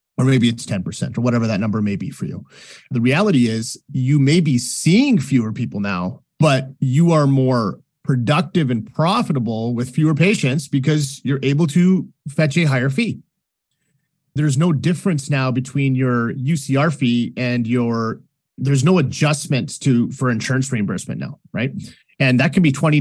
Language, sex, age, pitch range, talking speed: English, male, 30-49, 125-155 Hz, 165 wpm